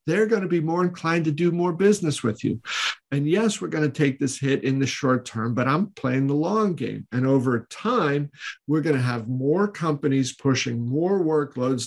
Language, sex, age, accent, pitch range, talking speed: English, male, 50-69, American, 125-155 Hz, 210 wpm